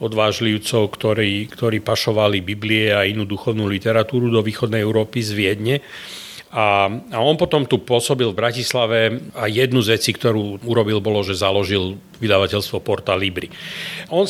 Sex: male